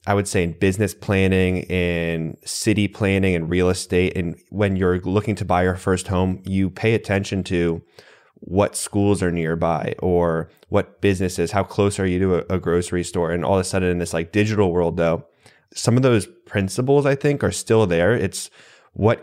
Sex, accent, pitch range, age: male, American, 90-100 Hz, 20-39